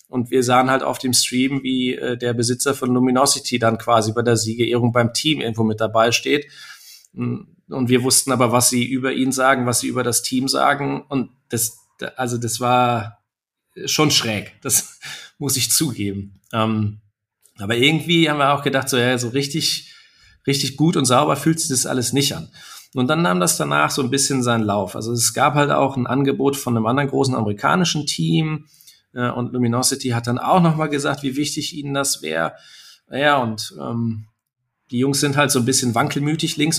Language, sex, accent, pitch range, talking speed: German, male, German, 120-145 Hz, 185 wpm